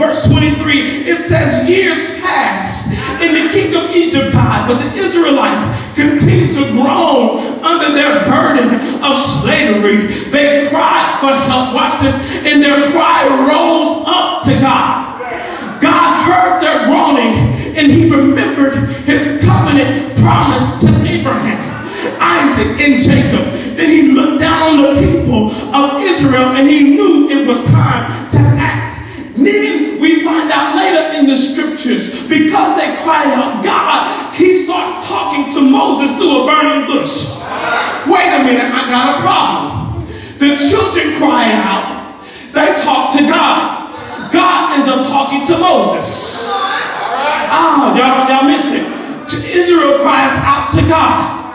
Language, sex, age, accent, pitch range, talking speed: English, male, 40-59, American, 270-320 Hz, 140 wpm